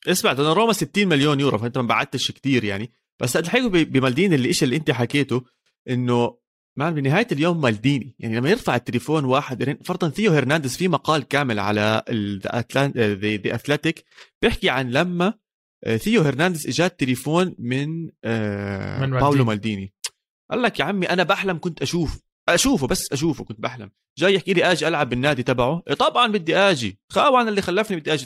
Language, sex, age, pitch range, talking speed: Arabic, male, 30-49, 120-165 Hz, 160 wpm